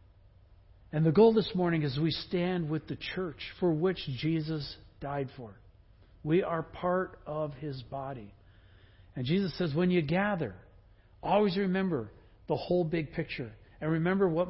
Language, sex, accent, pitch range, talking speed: English, male, American, 100-155 Hz, 155 wpm